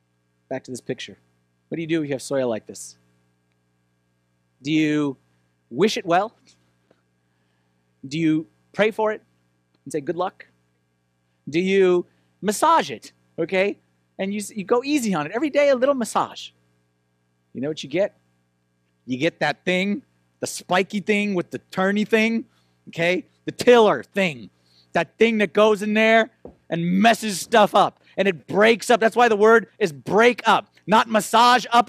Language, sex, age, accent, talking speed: English, male, 30-49, American, 165 wpm